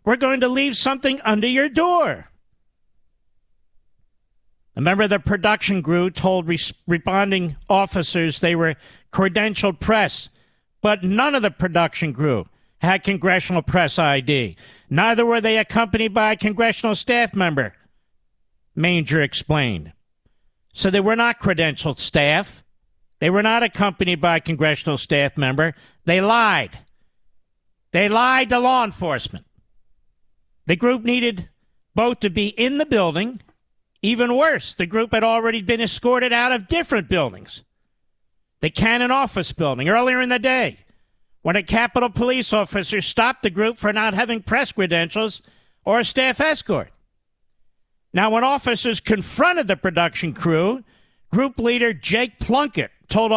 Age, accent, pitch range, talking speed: 50-69, American, 165-235 Hz, 135 wpm